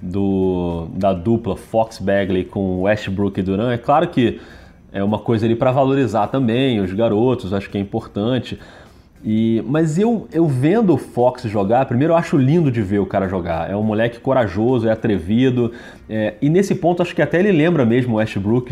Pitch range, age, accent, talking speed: 100-140 Hz, 30-49, Brazilian, 190 wpm